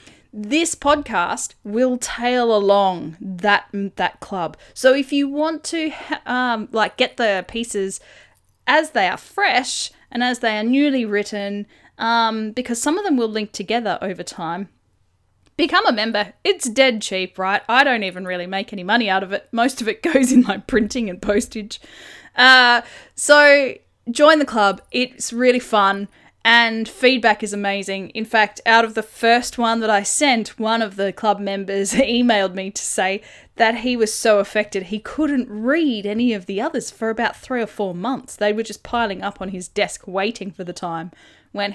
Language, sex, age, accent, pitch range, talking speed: English, female, 10-29, Australian, 195-245 Hz, 180 wpm